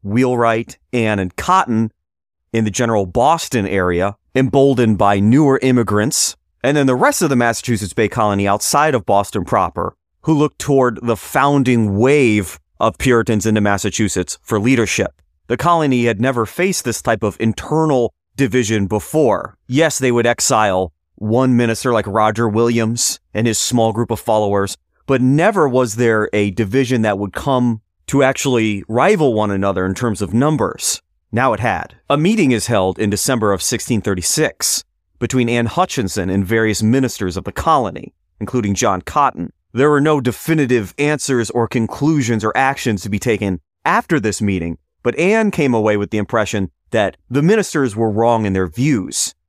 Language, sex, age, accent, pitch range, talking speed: English, male, 30-49, American, 105-130 Hz, 165 wpm